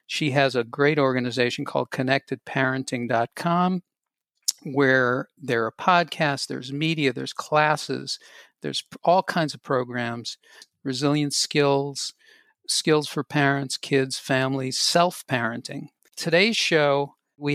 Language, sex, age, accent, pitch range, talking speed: English, male, 50-69, American, 135-160 Hz, 105 wpm